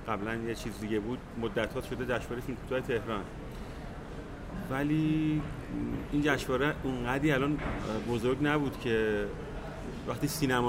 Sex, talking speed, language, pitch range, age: male, 125 wpm, Persian, 110-130 Hz, 30-49